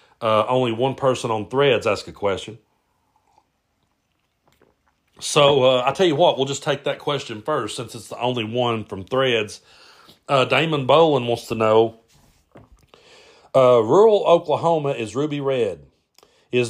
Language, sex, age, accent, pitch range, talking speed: English, male, 40-59, American, 110-135 Hz, 145 wpm